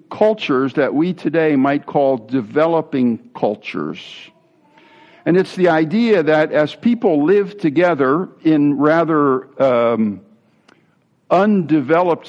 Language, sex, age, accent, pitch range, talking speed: English, male, 60-79, American, 135-190 Hz, 105 wpm